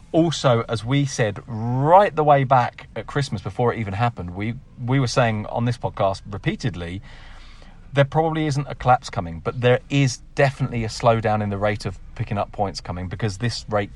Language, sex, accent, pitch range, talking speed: English, male, British, 100-140 Hz, 195 wpm